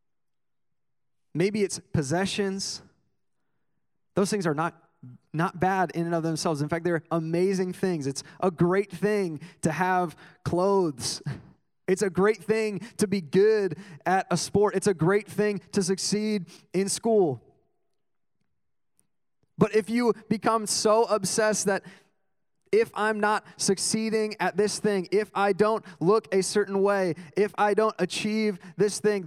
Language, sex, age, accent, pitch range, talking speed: English, male, 20-39, American, 145-195 Hz, 145 wpm